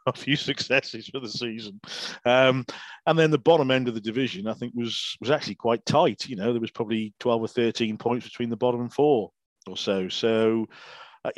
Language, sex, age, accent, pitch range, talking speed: English, male, 40-59, British, 115-130 Hz, 210 wpm